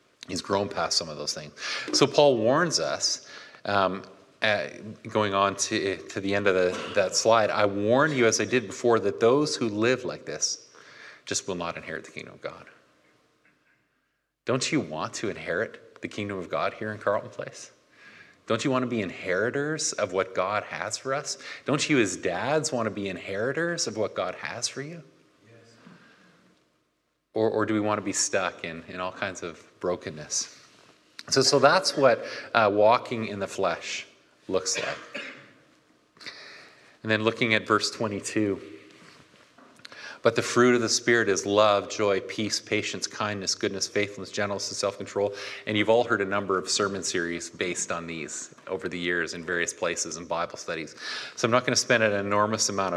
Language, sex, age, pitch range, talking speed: English, male, 30-49, 95-115 Hz, 180 wpm